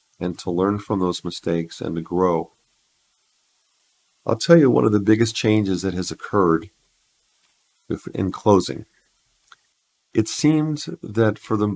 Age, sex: 50-69, male